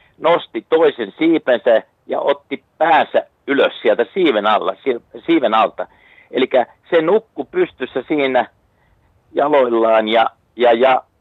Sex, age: male, 50-69